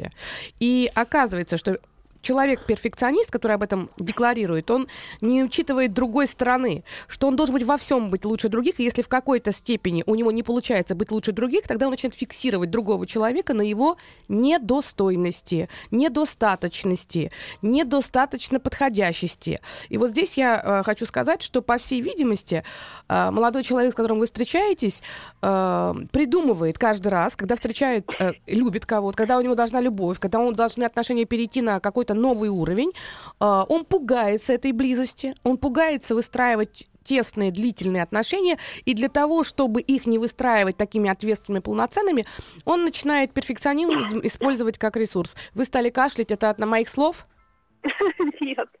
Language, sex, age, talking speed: Russian, female, 20-39, 150 wpm